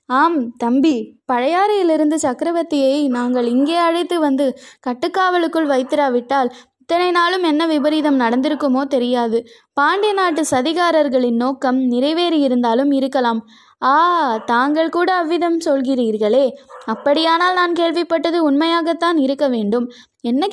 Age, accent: 20-39, native